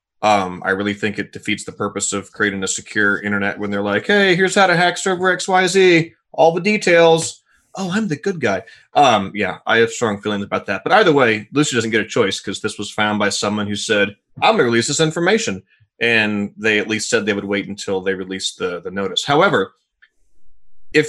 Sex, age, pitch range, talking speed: male, 30-49, 100-125 Hz, 220 wpm